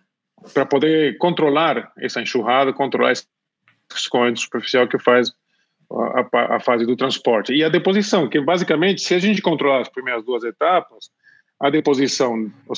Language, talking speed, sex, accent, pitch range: Portuguese, 155 wpm, male, Brazilian, 125-155 Hz